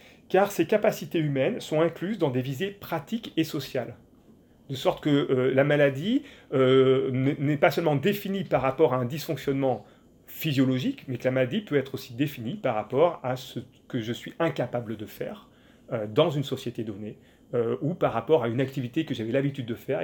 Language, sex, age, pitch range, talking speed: French, male, 30-49, 130-175 Hz, 190 wpm